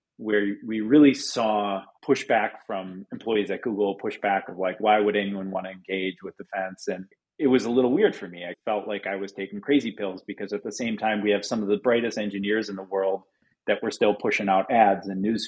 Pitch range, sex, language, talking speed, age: 100-125 Hz, male, English, 230 wpm, 30-49